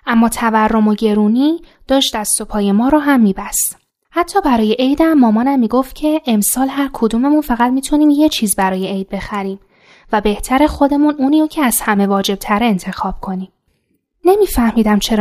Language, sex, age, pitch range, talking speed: Persian, female, 10-29, 210-285 Hz, 155 wpm